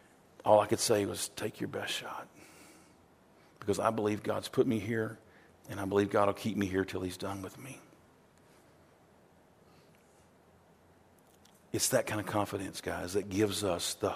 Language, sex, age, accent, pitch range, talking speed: English, male, 50-69, American, 110-160 Hz, 165 wpm